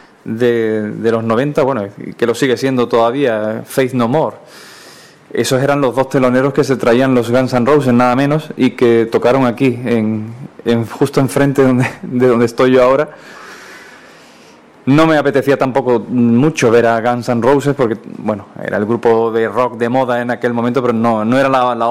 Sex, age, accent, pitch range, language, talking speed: male, 20-39, Spanish, 115-135 Hz, Spanish, 190 wpm